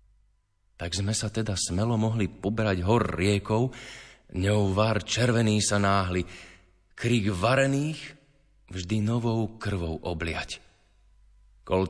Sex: male